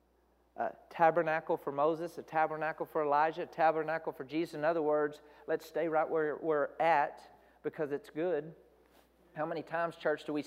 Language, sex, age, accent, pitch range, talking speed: English, male, 40-59, American, 155-205 Hz, 165 wpm